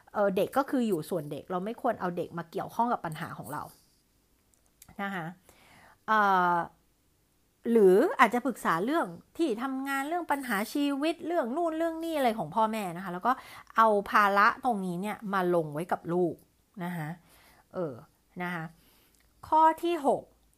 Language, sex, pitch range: Thai, female, 180-260 Hz